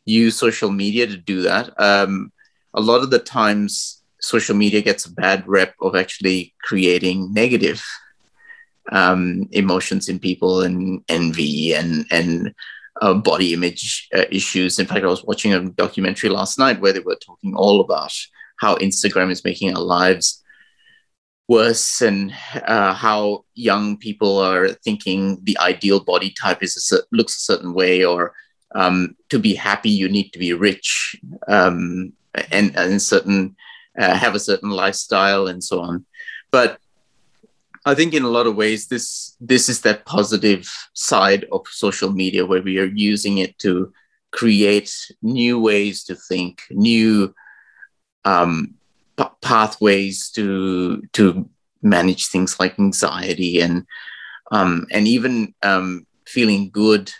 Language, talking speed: English, 150 wpm